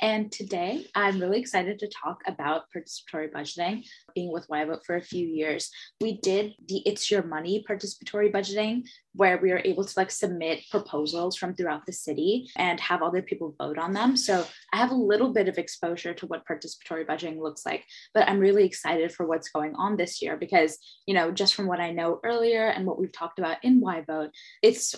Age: 10-29